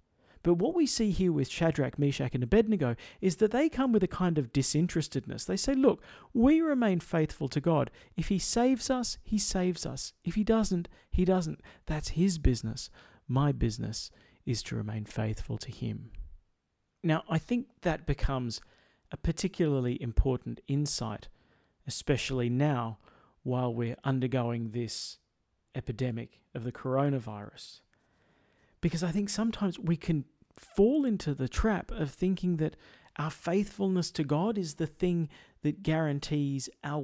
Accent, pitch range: Australian, 130-190 Hz